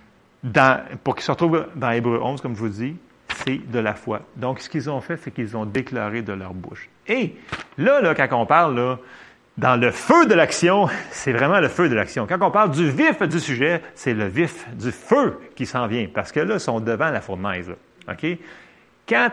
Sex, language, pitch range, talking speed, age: male, French, 115-165 Hz, 220 wpm, 40-59